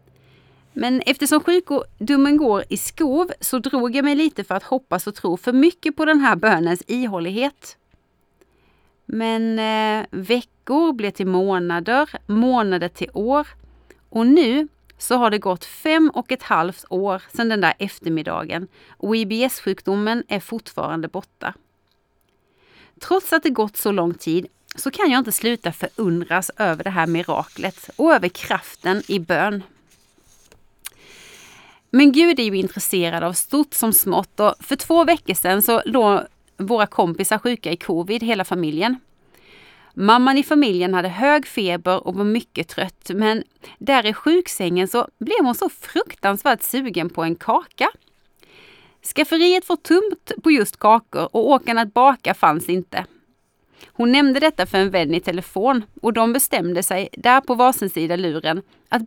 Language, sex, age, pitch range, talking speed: Swedish, female, 30-49, 185-270 Hz, 150 wpm